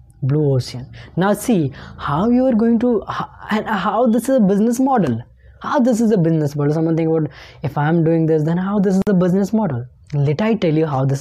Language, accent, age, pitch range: English, Indian, 20-39, 145-190 Hz